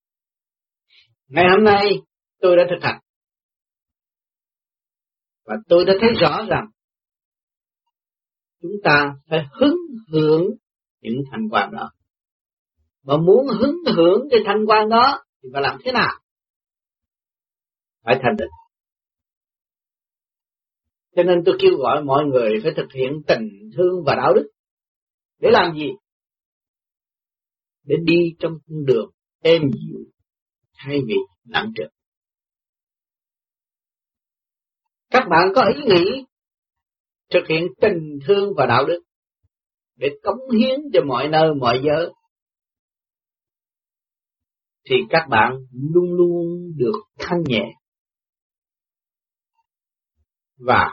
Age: 40-59